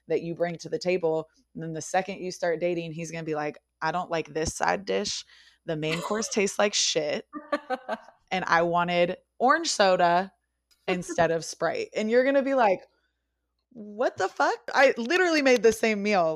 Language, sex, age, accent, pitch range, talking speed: English, female, 20-39, American, 155-205 Hz, 195 wpm